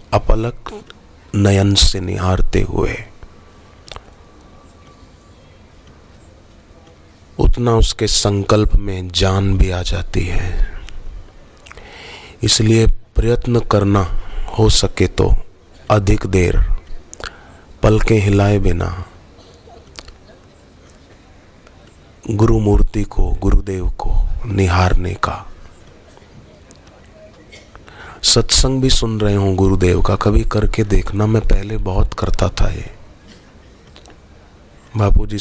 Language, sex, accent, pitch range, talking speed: Hindi, male, native, 85-105 Hz, 85 wpm